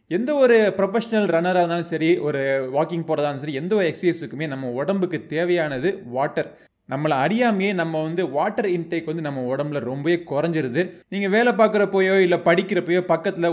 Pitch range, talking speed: 155-200 Hz, 150 wpm